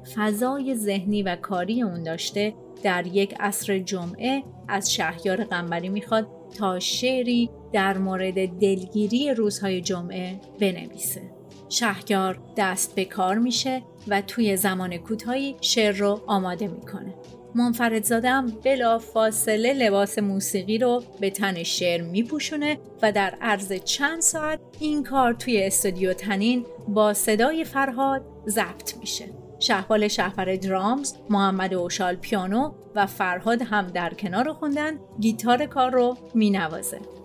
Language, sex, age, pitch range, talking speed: Persian, female, 30-49, 190-245 Hz, 125 wpm